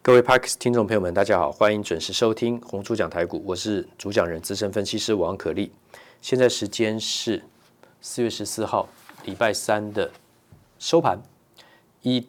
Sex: male